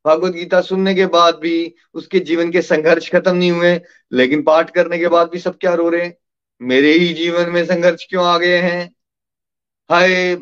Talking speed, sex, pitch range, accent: 195 wpm, male, 165-220 Hz, native